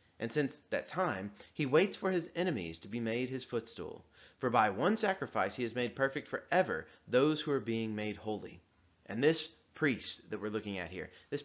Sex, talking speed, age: male, 200 wpm, 30-49